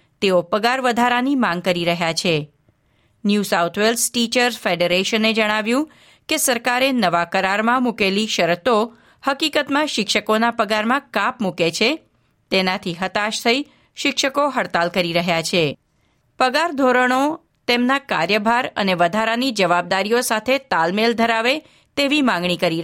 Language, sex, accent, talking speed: Gujarati, female, native, 120 wpm